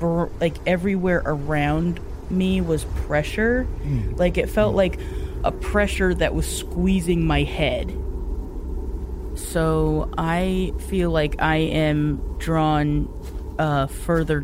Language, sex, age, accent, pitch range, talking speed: English, female, 20-39, American, 135-160 Hz, 110 wpm